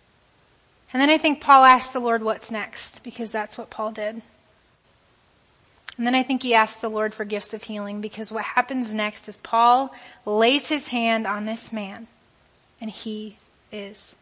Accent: American